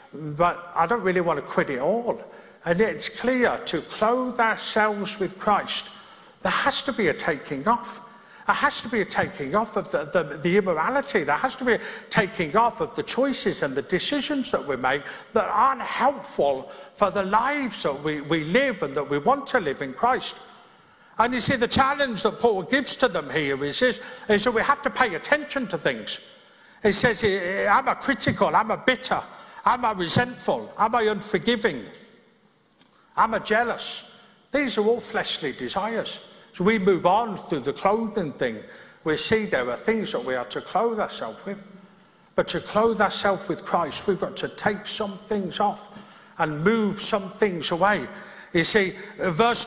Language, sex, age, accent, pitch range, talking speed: English, male, 50-69, British, 190-235 Hz, 185 wpm